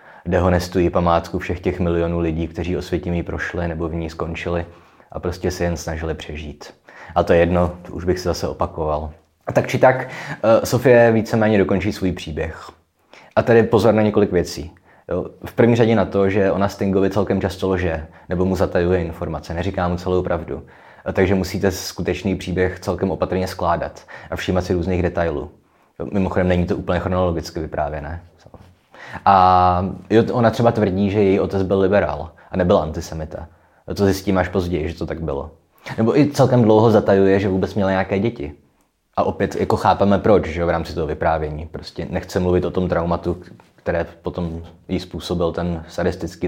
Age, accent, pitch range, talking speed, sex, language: 20-39, native, 85-100 Hz, 180 wpm, male, Czech